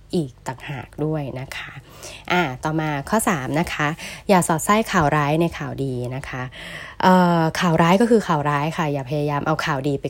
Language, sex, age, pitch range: Thai, female, 20-39, 145-185 Hz